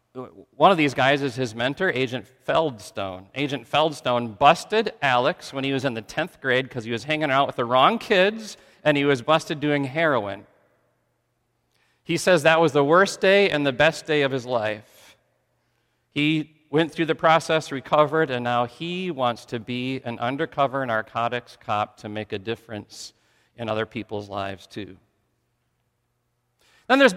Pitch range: 120-165 Hz